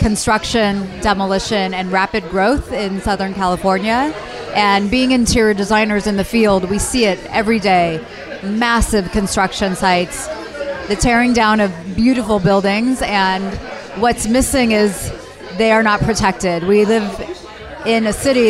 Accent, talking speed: American, 135 wpm